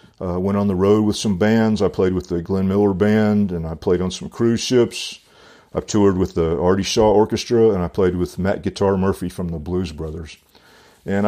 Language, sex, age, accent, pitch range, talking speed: English, male, 40-59, American, 90-110 Hz, 220 wpm